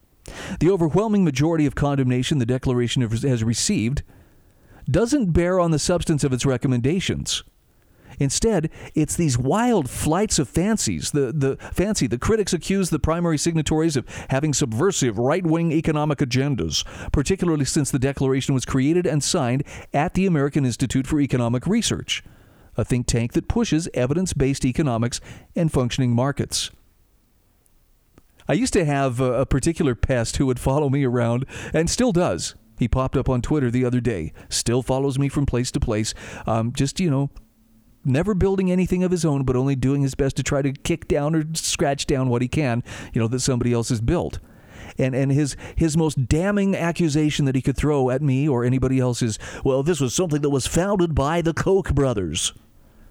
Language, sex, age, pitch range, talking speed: English, male, 40-59, 125-160 Hz, 175 wpm